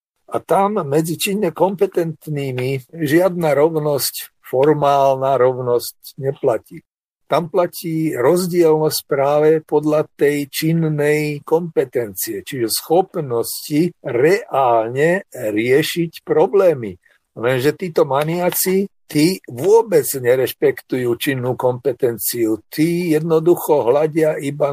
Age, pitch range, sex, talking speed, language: 50-69, 135-180 Hz, male, 85 wpm, Slovak